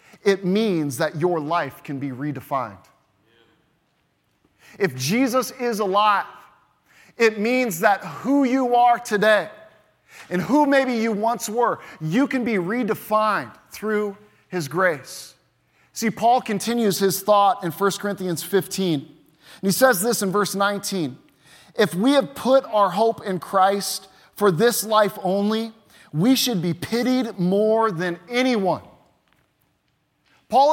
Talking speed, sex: 135 wpm, male